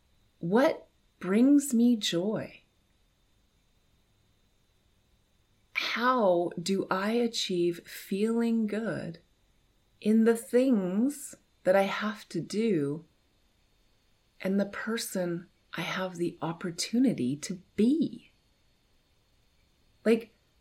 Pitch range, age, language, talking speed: 165-230 Hz, 30-49, English, 80 wpm